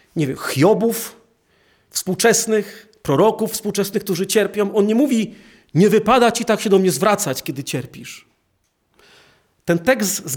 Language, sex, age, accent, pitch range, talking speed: Polish, male, 40-59, native, 160-205 Hz, 140 wpm